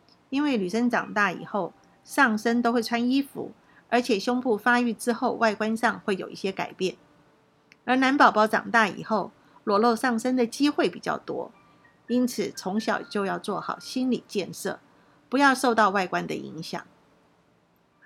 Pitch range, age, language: 205-250 Hz, 50-69, Chinese